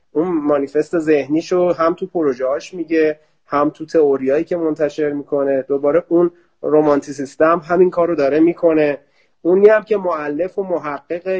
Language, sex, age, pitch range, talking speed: Persian, male, 30-49, 140-175 Hz, 130 wpm